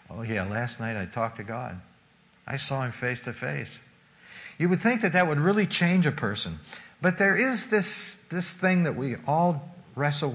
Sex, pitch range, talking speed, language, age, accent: male, 120-165 Hz, 195 wpm, English, 60-79, American